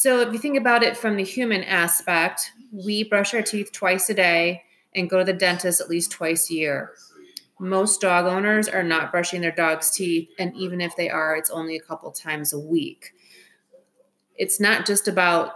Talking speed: 200 wpm